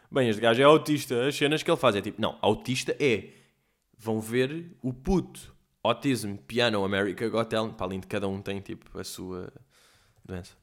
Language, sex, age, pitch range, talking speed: Portuguese, male, 20-39, 105-175 Hz, 185 wpm